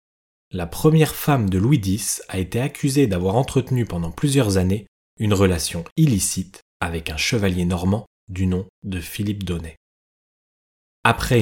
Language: French